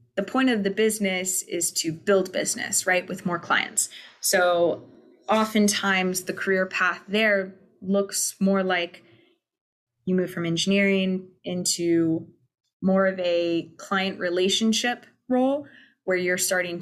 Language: English